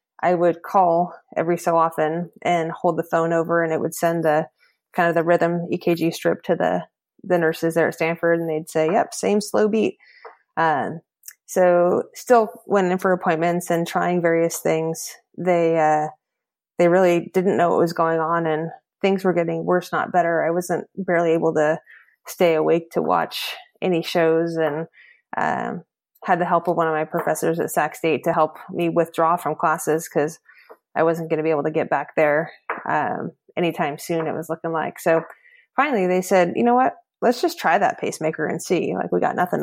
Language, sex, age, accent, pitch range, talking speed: English, female, 20-39, American, 165-180 Hz, 195 wpm